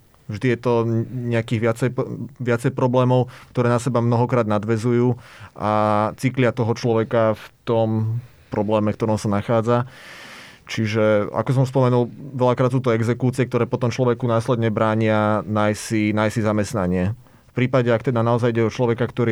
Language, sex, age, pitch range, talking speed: Slovak, male, 30-49, 115-125 Hz, 150 wpm